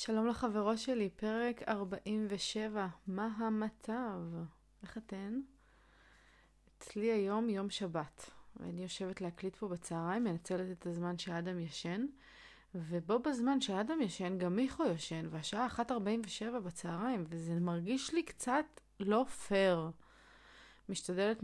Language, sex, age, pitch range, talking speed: Hebrew, female, 30-49, 175-225 Hz, 110 wpm